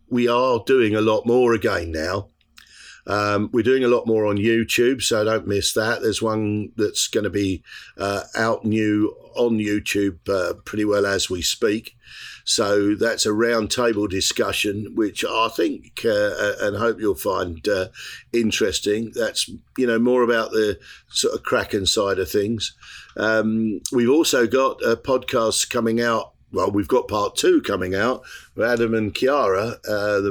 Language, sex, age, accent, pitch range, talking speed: English, male, 50-69, British, 100-120 Hz, 170 wpm